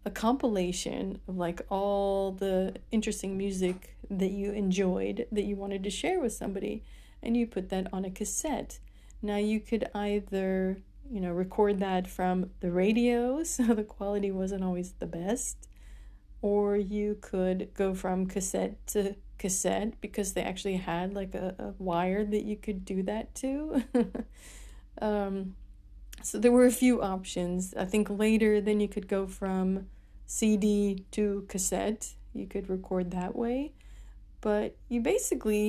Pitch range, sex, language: 190-220 Hz, female, English